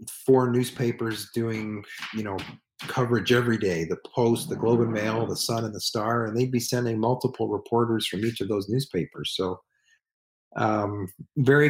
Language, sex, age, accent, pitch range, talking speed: English, male, 40-59, American, 115-130 Hz, 170 wpm